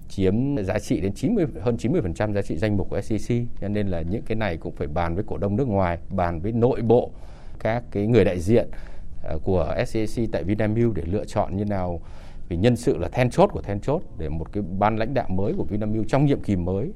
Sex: male